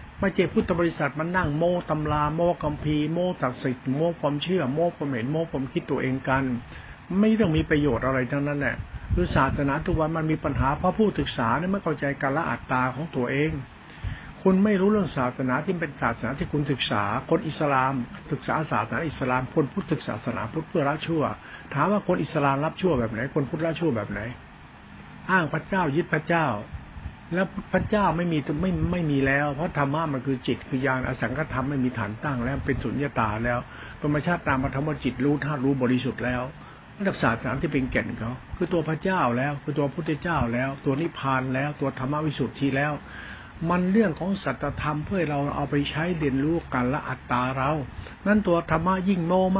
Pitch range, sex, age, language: 130-170 Hz, male, 60-79, Thai